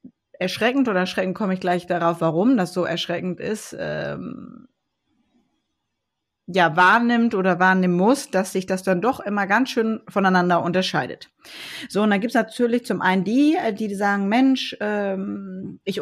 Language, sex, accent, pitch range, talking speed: German, female, German, 180-230 Hz, 155 wpm